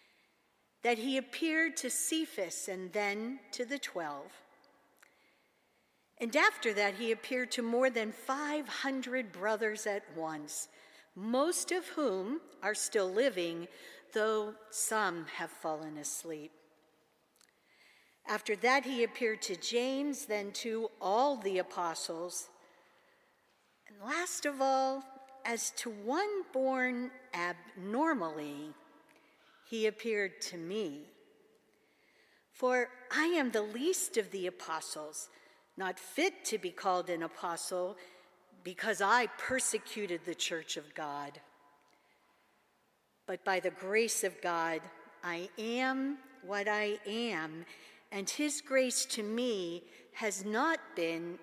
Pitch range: 180-265 Hz